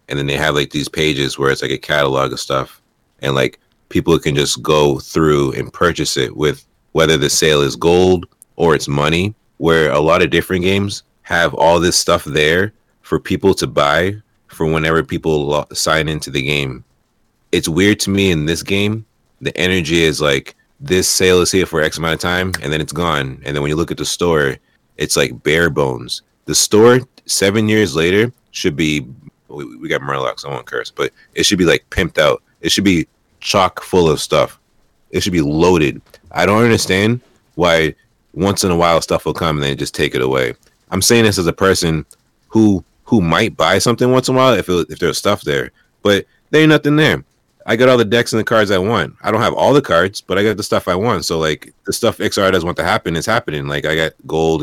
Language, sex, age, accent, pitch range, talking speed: English, male, 30-49, American, 75-105 Hz, 225 wpm